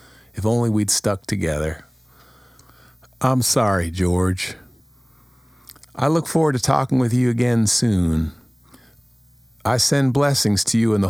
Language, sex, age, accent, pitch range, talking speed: English, male, 50-69, American, 85-125 Hz, 130 wpm